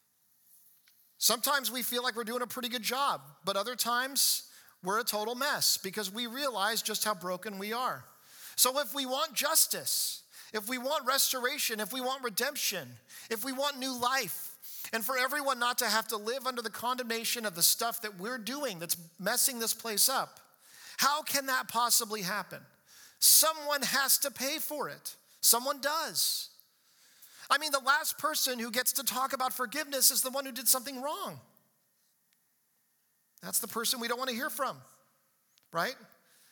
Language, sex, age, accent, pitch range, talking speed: English, male, 40-59, American, 205-270 Hz, 175 wpm